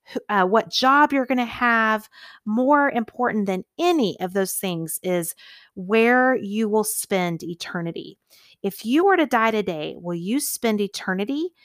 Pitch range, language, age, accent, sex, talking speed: 185-245 Hz, English, 30-49, American, female, 155 wpm